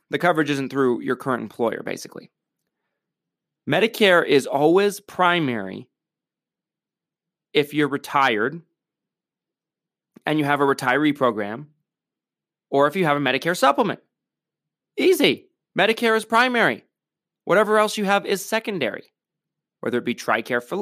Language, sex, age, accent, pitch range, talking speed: English, male, 30-49, American, 135-200 Hz, 125 wpm